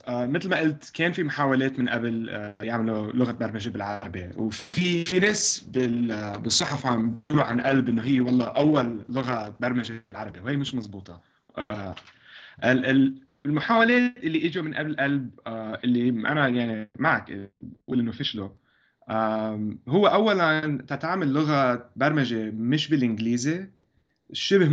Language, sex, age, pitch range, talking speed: Arabic, male, 20-39, 115-155 Hz, 135 wpm